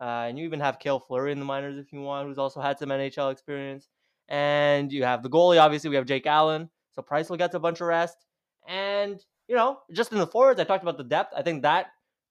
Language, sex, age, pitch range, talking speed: English, male, 20-39, 140-180 Hz, 255 wpm